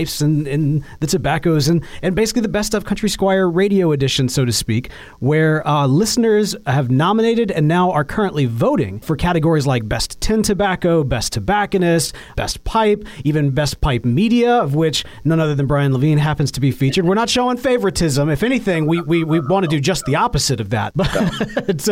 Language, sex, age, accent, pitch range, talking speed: English, male, 30-49, American, 140-205 Hz, 195 wpm